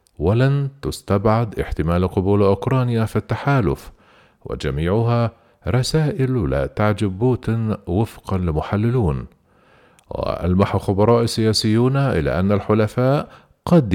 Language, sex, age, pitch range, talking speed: Arabic, male, 50-69, 95-120 Hz, 90 wpm